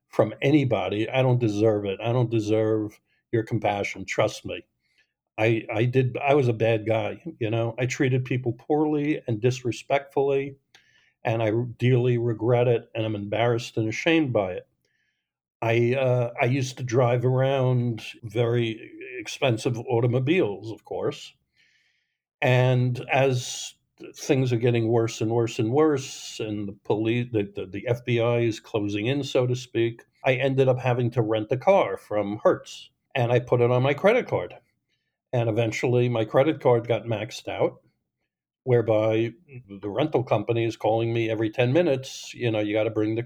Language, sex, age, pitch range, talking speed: English, male, 60-79, 110-130 Hz, 165 wpm